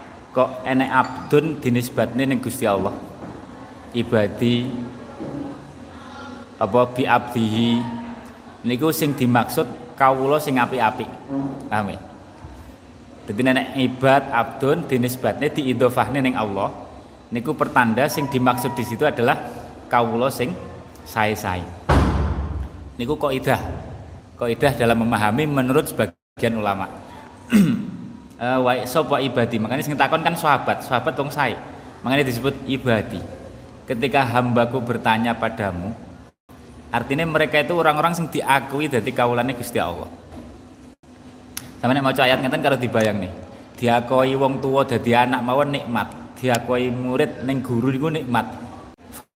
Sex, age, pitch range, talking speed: male, 30-49, 115-135 Hz, 115 wpm